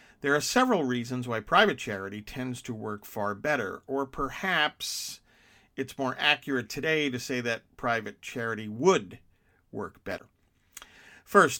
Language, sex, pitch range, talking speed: English, male, 105-145 Hz, 140 wpm